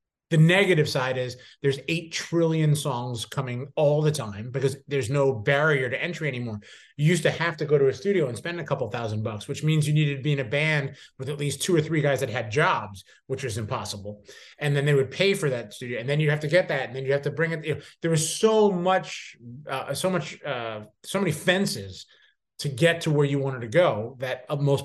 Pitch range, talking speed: 130-165 Hz, 245 wpm